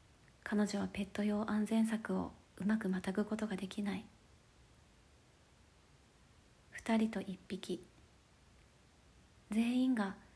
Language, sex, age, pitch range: Japanese, female, 40-59, 190-215 Hz